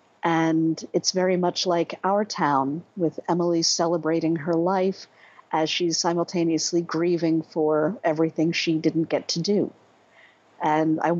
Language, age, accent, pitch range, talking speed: English, 50-69, American, 155-185 Hz, 135 wpm